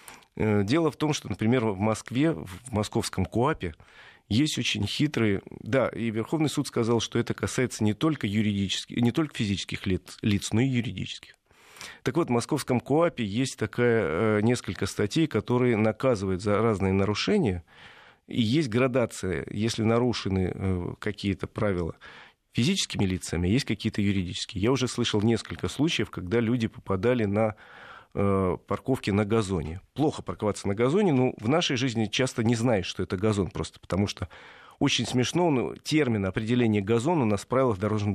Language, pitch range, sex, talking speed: Russian, 100-130 Hz, male, 155 wpm